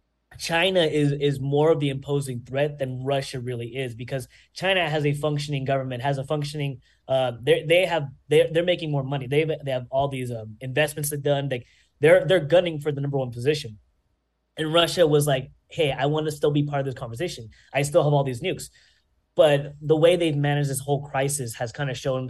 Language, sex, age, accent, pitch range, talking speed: English, male, 10-29, American, 130-155 Hz, 215 wpm